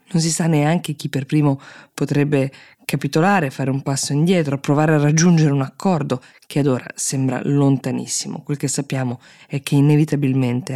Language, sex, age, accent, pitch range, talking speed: Italian, female, 20-39, native, 130-155 Hz, 160 wpm